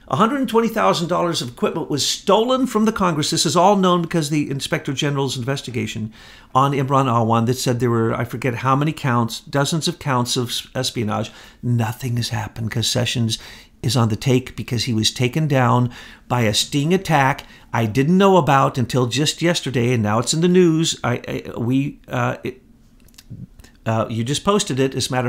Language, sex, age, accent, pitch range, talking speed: English, male, 50-69, American, 120-175 Hz, 185 wpm